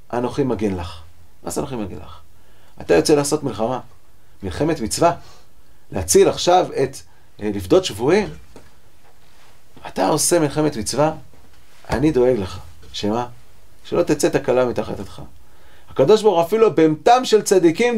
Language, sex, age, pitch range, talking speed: English, male, 40-59, 150-240 Hz, 125 wpm